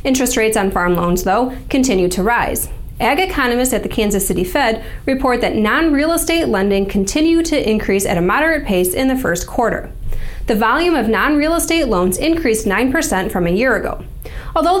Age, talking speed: 20-39, 180 wpm